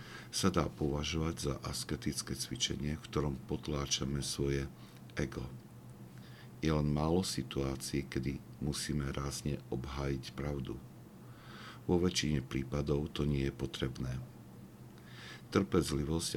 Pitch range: 65-75 Hz